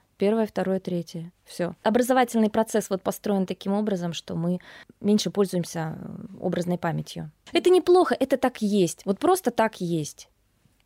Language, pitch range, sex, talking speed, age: Russian, 185-240 Hz, female, 140 wpm, 20-39